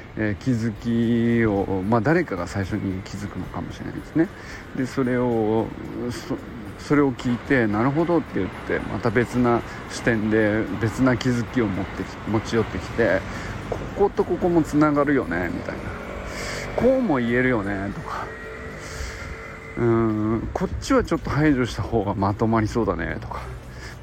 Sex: male